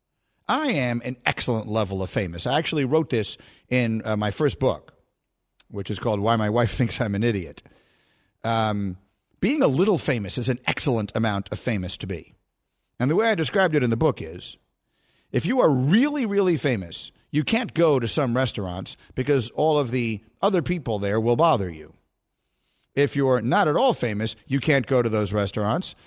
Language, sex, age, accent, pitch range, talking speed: English, male, 50-69, American, 110-155 Hz, 195 wpm